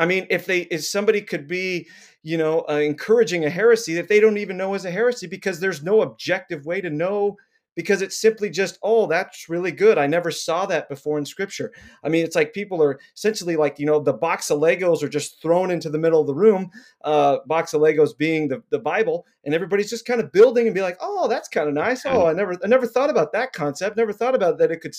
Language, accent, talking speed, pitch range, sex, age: English, American, 250 wpm, 150-210 Hz, male, 30-49